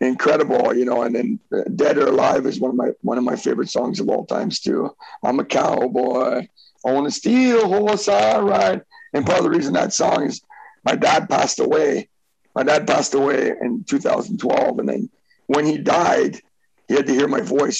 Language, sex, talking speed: English, male, 200 wpm